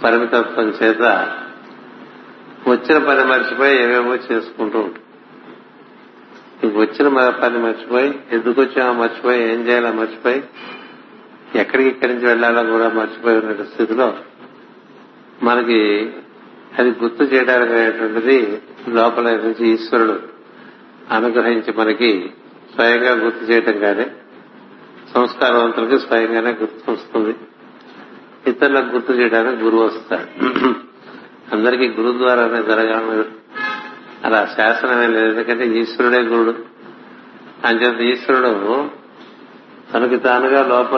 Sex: male